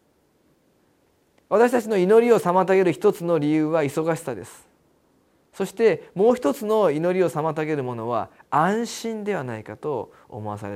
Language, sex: Japanese, male